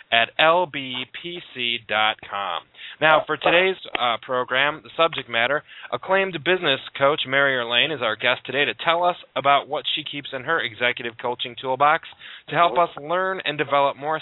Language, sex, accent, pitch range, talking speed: English, male, American, 125-155 Hz, 160 wpm